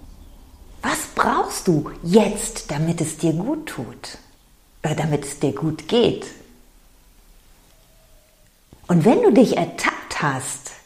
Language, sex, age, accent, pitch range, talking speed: German, female, 40-59, German, 155-225 Hz, 110 wpm